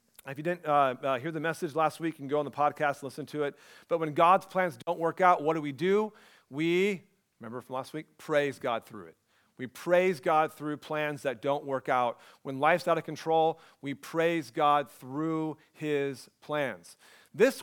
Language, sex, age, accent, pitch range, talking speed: English, male, 40-59, American, 145-175 Hz, 210 wpm